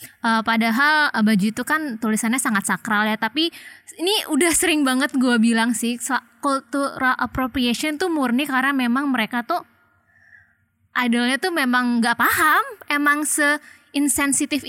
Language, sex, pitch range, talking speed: Indonesian, female, 235-295 Hz, 130 wpm